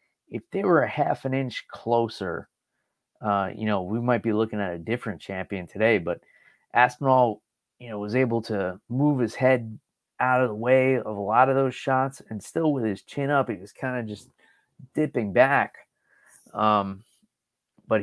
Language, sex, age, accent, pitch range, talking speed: English, male, 30-49, American, 110-140 Hz, 185 wpm